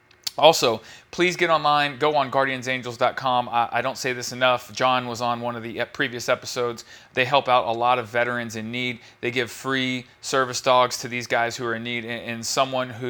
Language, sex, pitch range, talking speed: English, male, 115-130 Hz, 210 wpm